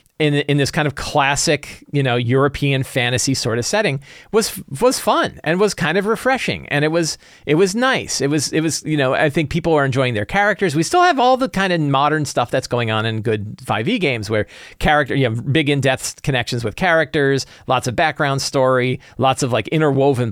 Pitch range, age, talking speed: 115-155 Hz, 40-59, 215 wpm